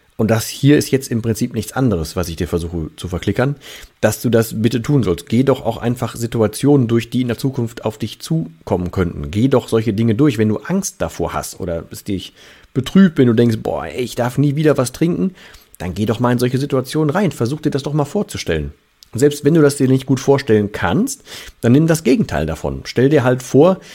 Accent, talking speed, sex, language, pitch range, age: German, 230 wpm, male, German, 105-145 Hz, 40-59